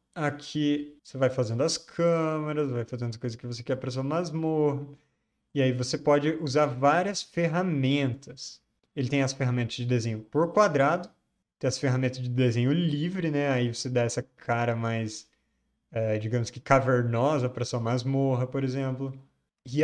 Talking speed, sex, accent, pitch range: 160 wpm, male, Brazilian, 120-145 Hz